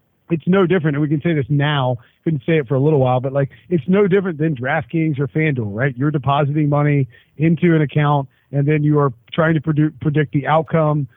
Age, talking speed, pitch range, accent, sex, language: 40-59, 225 wpm, 140-165 Hz, American, male, English